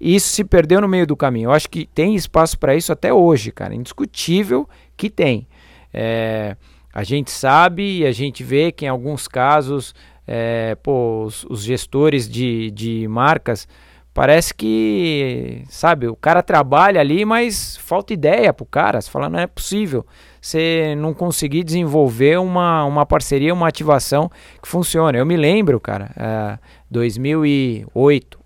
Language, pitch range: Portuguese, 110-150 Hz